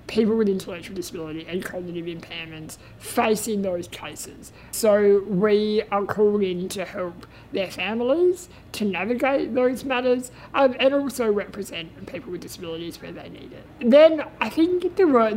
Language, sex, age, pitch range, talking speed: English, male, 50-69, 180-245 Hz, 150 wpm